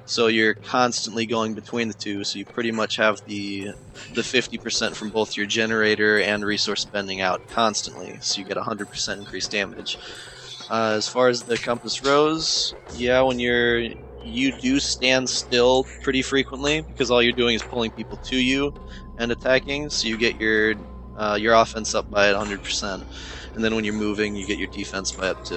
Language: English